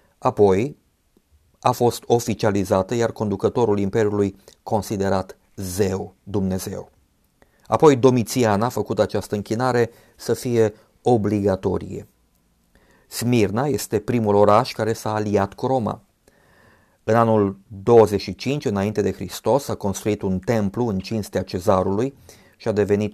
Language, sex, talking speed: Romanian, male, 115 wpm